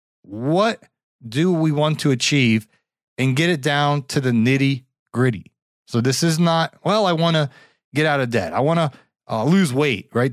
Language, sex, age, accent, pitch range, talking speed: English, male, 30-49, American, 120-160 Hz, 190 wpm